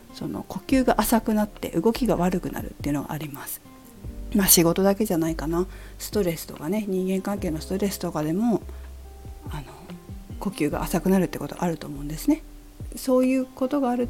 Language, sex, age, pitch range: Japanese, female, 50-69, 165-210 Hz